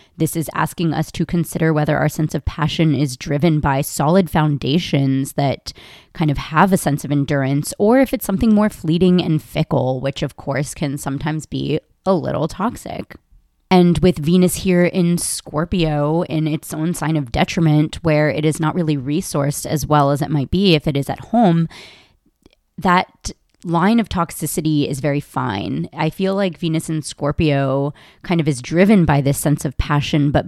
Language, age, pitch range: English, 20-39, 140-170 Hz